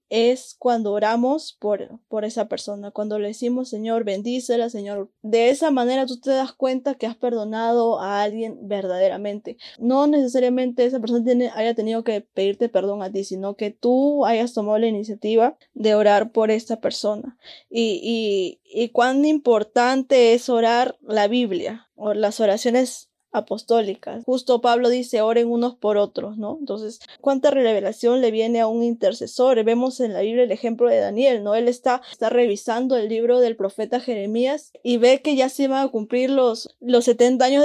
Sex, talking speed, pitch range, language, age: female, 175 wpm, 215-255 Hz, Spanish, 10-29